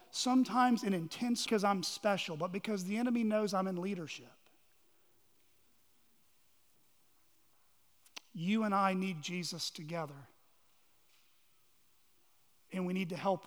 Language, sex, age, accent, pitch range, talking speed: English, male, 40-59, American, 180-235 Hz, 110 wpm